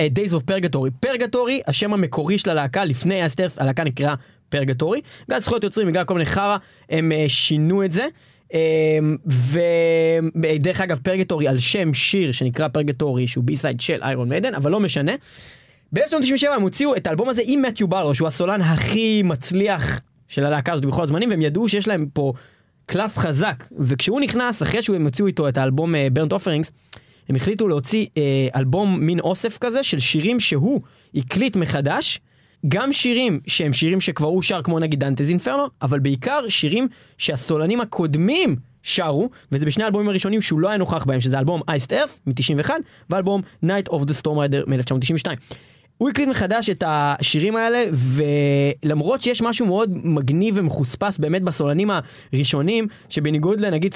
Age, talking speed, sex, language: 20-39, 155 wpm, male, Hebrew